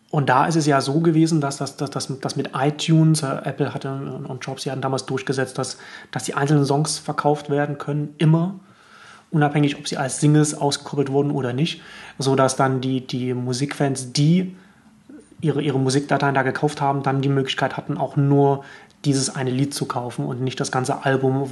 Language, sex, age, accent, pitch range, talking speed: German, male, 30-49, German, 130-150 Hz, 185 wpm